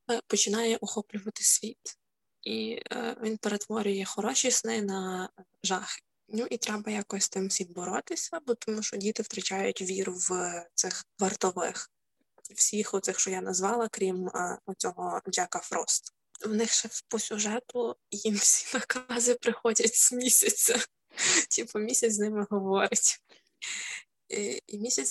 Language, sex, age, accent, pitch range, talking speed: Ukrainian, female, 20-39, native, 195-230 Hz, 135 wpm